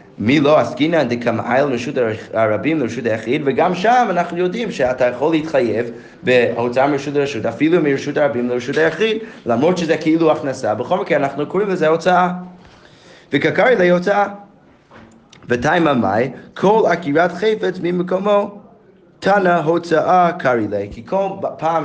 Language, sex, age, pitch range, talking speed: Hebrew, male, 20-39, 125-175 Hz, 130 wpm